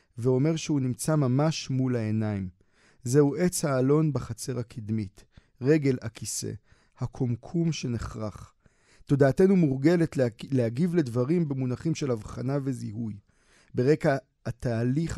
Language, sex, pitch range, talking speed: Hebrew, male, 120-155 Hz, 100 wpm